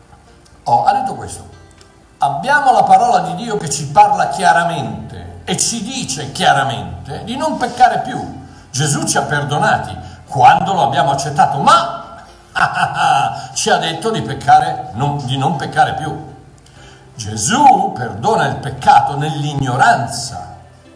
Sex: male